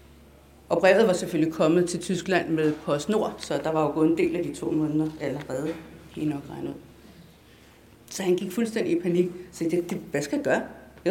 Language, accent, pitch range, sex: Danish, native, 165-225 Hz, female